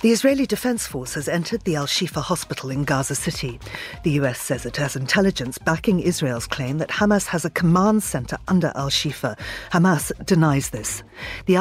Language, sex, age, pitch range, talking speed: English, female, 40-59, 140-205 Hz, 170 wpm